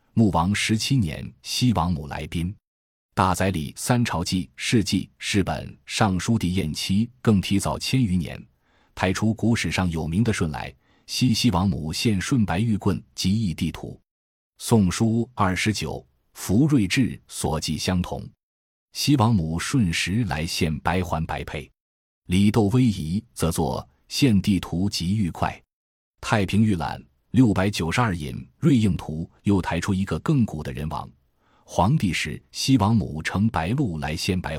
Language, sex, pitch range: Chinese, male, 80-115 Hz